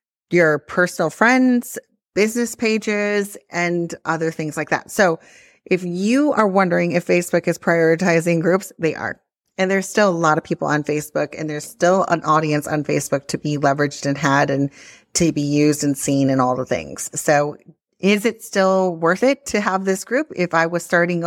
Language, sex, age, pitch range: English, female, 30-49, 155-195 Hz